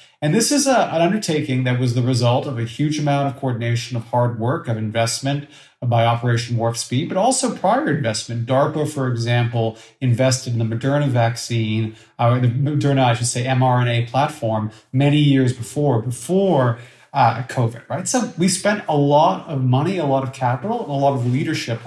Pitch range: 115-145 Hz